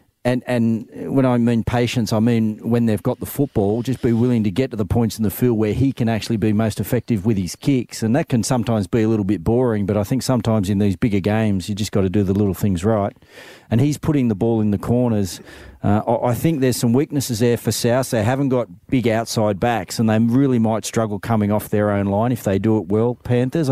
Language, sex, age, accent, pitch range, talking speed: English, male, 40-59, Australian, 105-125 Hz, 250 wpm